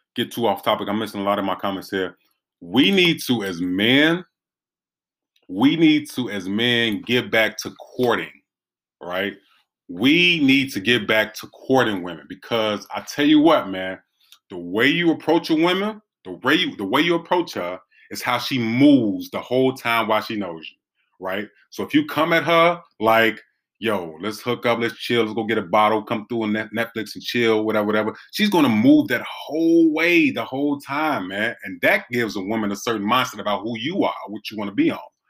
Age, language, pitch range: 30-49, English, 110-165 Hz